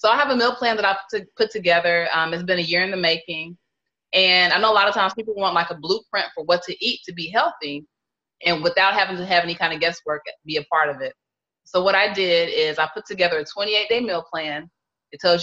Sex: female